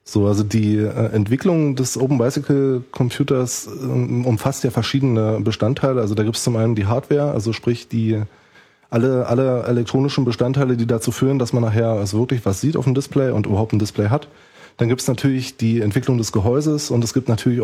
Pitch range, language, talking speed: 115-135 Hz, German, 195 wpm